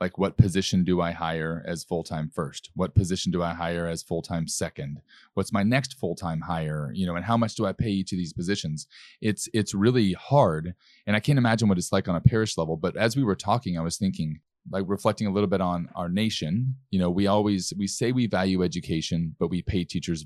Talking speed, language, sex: 230 wpm, English, male